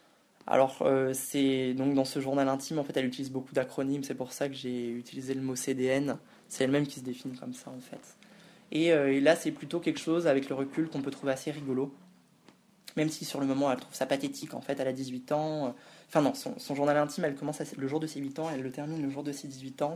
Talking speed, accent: 260 wpm, French